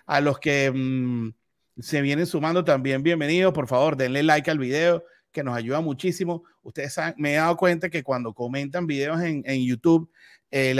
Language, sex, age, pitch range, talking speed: Spanish, male, 30-49, 130-165 Hz, 185 wpm